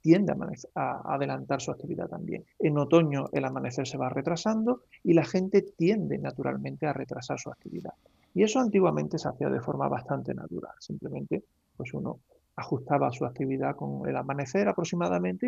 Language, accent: Spanish, Spanish